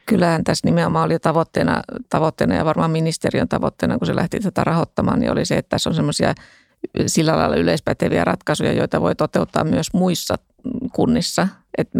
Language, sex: Finnish, female